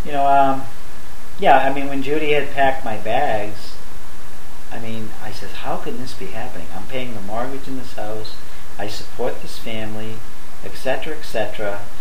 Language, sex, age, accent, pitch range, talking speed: English, male, 40-59, American, 100-130 Hz, 180 wpm